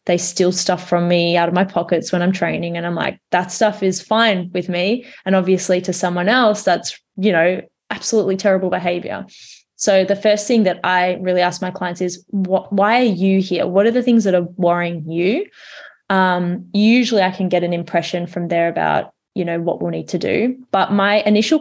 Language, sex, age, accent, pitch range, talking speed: English, female, 20-39, Australian, 180-200 Hz, 210 wpm